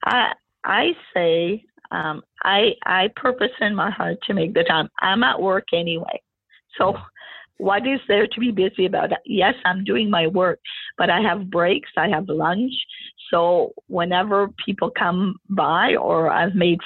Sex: female